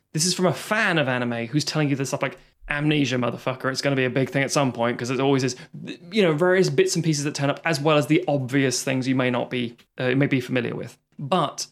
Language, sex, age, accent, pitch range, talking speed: English, male, 20-39, British, 135-180 Hz, 275 wpm